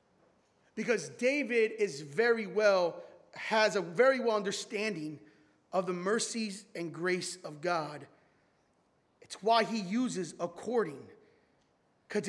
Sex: male